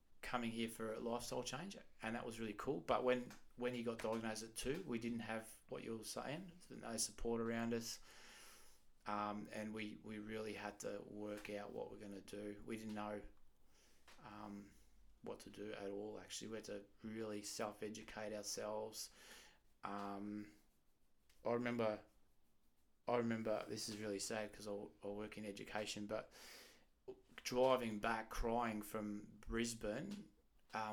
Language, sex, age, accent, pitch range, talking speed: English, male, 20-39, Australian, 105-115 Hz, 155 wpm